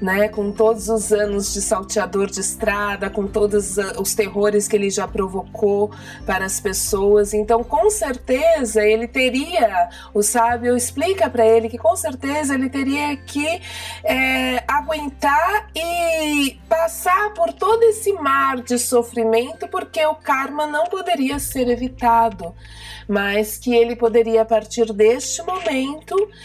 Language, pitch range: Portuguese, 210-260 Hz